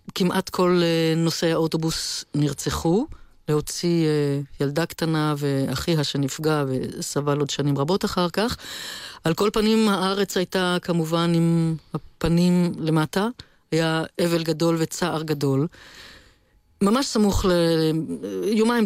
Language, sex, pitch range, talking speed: Hebrew, female, 150-190 Hz, 105 wpm